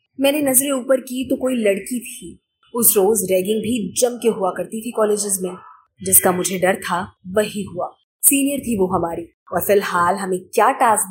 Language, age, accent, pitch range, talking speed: Hindi, 20-39, native, 190-260 Hz, 185 wpm